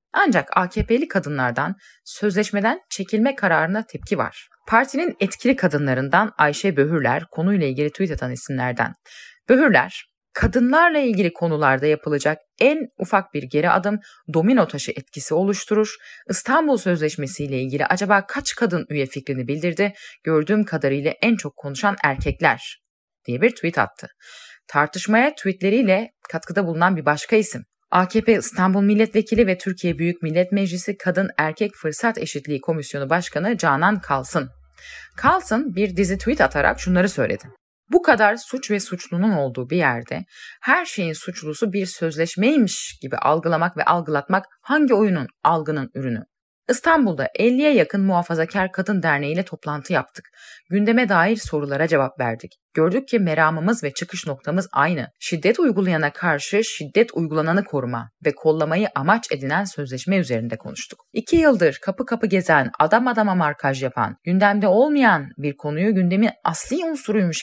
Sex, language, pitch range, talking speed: female, Turkish, 150-215 Hz, 135 wpm